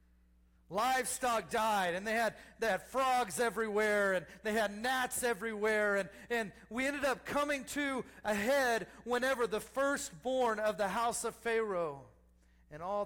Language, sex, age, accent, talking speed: English, male, 40-59, American, 145 wpm